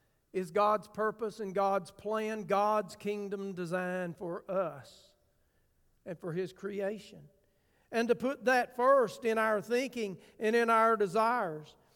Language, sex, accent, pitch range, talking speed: English, male, American, 190-230 Hz, 135 wpm